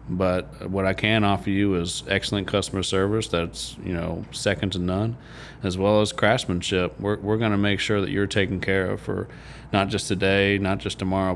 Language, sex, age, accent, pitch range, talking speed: English, male, 30-49, American, 95-110 Hz, 195 wpm